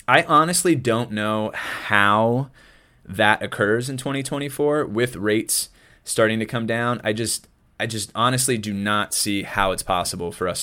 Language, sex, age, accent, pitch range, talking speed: English, male, 20-39, American, 100-125 Hz, 160 wpm